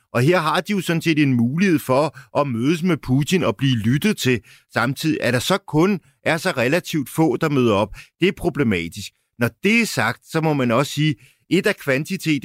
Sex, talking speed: male, 225 wpm